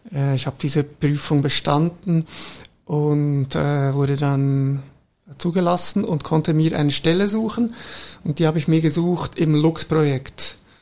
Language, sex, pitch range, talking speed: German, male, 145-165 Hz, 130 wpm